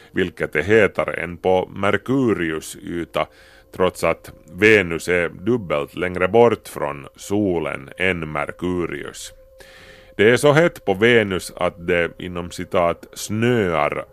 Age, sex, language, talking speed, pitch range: 30-49, male, Swedish, 125 wpm, 85-110 Hz